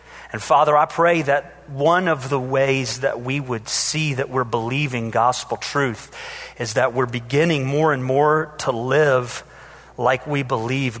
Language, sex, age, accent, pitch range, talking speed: English, male, 40-59, American, 120-150 Hz, 165 wpm